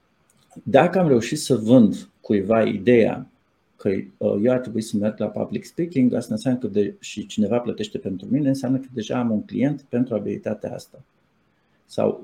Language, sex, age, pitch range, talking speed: Romanian, male, 50-69, 105-130 Hz, 165 wpm